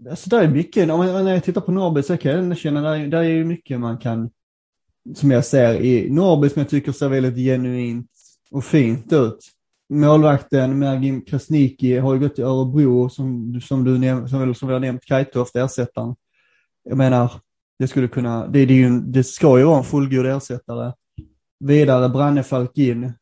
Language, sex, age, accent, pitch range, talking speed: Swedish, male, 20-39, native, 125-145 Hz, 185 wpm